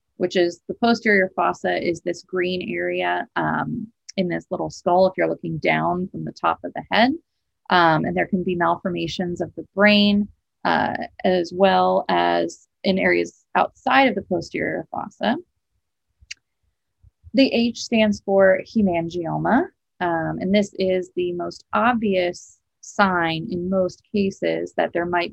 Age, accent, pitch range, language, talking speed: 30-49, American, 175-215 Hz, English, 150 wpm